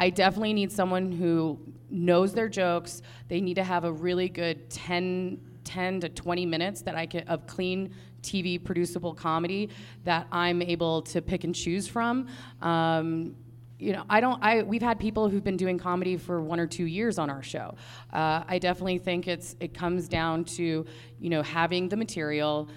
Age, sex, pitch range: 30-49, female, 155-180 Hz